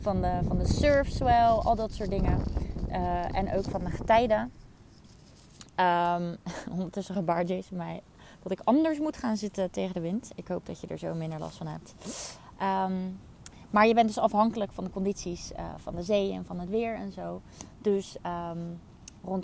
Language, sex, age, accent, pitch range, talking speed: Dutch, female, 20-39, Dutch, 180-220 Hz, 195 wpm